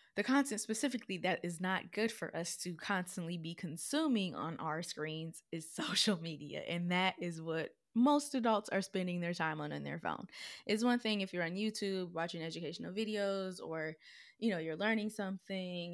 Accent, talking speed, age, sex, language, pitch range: American, 185 wpm, 20-39, female, English, 160-195 Hz